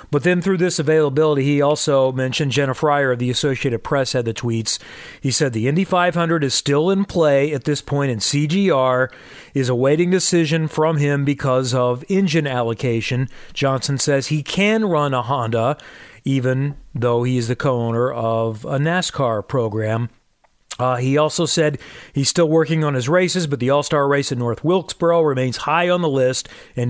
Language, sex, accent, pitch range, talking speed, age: English, male, American, 125-160 Hz, 180 wpm, 40-59